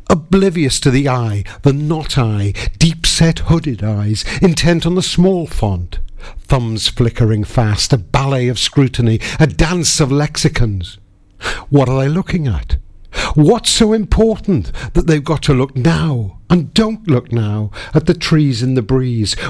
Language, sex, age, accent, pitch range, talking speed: English, male, 60-79, British, 105-150 Hz, 150 wpm